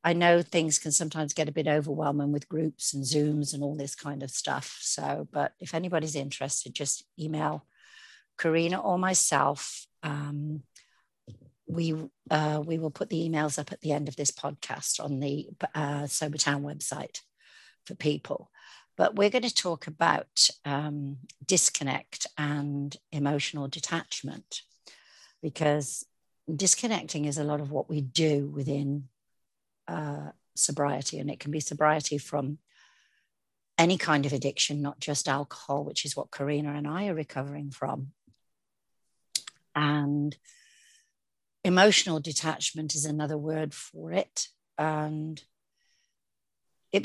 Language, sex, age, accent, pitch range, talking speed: English, female, 60-79, British, 145-160 Hz, 135 wpm